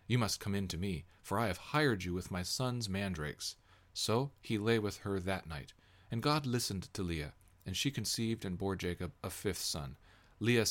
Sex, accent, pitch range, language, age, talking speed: male, American, 90-115 Hz, English, 40-59, 205 wpm